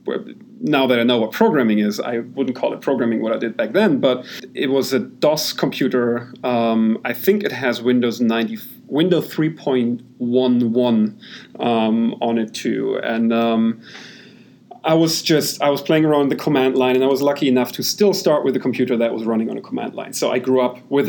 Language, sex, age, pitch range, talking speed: English, male, 40-59, 120-140 Hz, 200 wpm